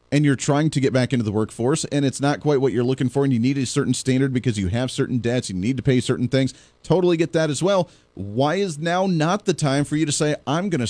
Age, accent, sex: 40-59, American, male